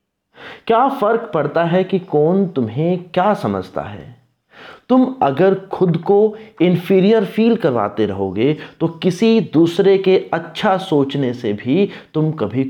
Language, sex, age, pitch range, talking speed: Hindi, male, 30-49, 110-180 Hz, 130 wpm